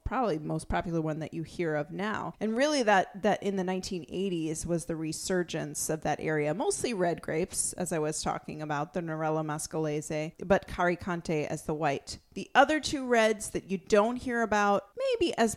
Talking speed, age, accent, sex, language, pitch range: 195 wpm, 30-49, American, female, English, 170-245 Hz